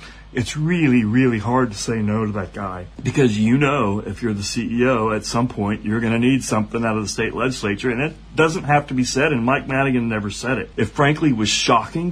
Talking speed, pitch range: 235 wpm, 105-135 Hz